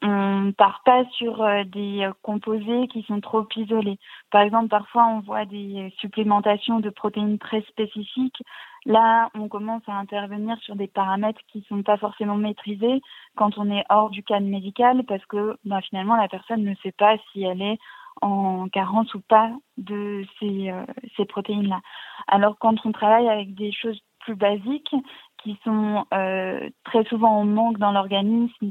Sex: female